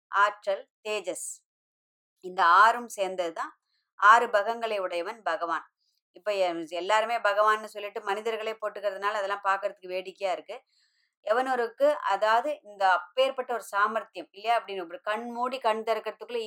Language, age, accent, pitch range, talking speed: Tamil, 20-39, native, 185-225 Hz, 115 wpm